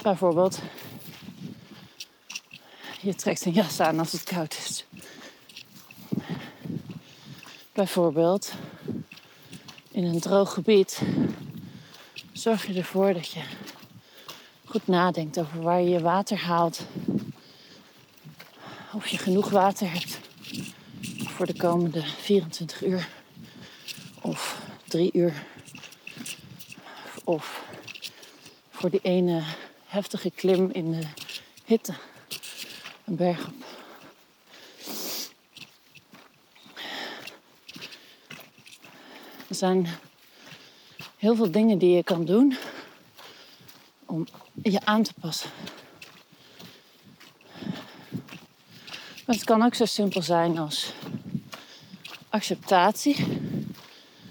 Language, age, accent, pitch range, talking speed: Dutch, 40-59, Dutch, 175-205 Hz, 85 wpm